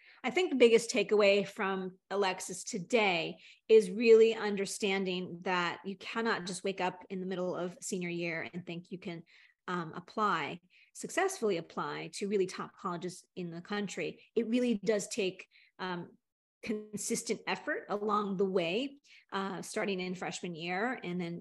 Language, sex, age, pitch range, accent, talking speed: English, female, 40-59, 185-225 Hz, American, 155 wpm